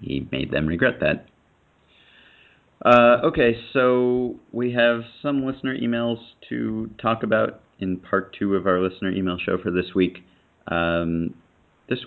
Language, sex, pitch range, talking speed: English, male, 90-110 Hz, 145 wpm